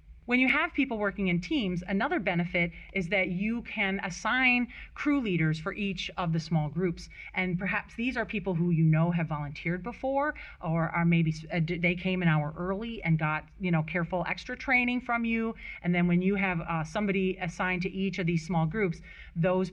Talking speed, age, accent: 200 wpm, 30-49, American